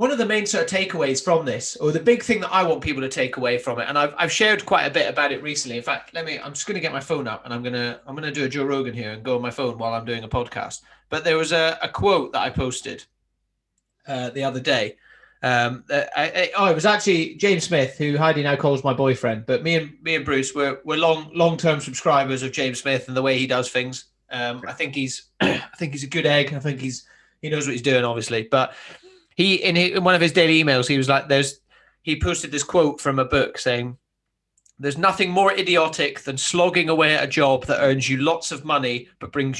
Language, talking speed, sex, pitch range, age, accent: English, 260 wpm, male, 135-170 Hz, 30-49, British